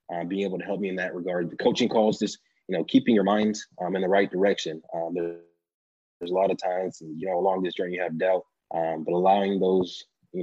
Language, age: English, 20-39